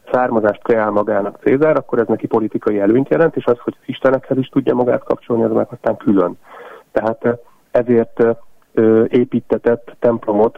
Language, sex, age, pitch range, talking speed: Hungarian, male, 40-59, 110-130 Hz, 145 wpm